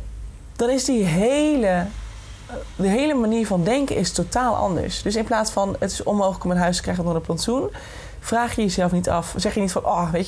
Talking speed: 215 wpm